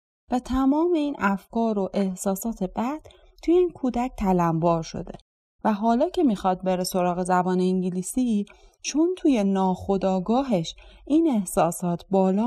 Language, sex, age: Persian, female, 30-49